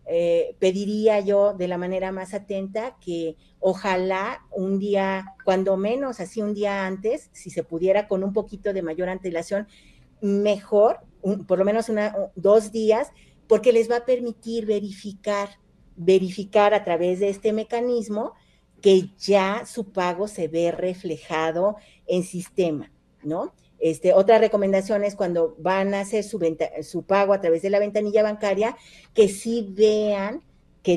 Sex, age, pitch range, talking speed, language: female, 40-59, 185-215 Hz, 155 wpm, Spanish